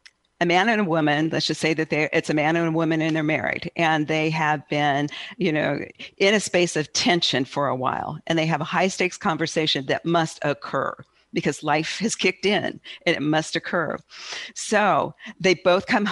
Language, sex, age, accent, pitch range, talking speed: English, female, 50-69, American, 145-175 Hz, 205 wpm